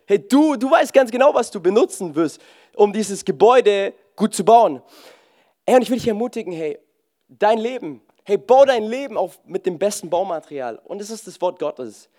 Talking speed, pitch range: 195 wpm, 155-220 Hz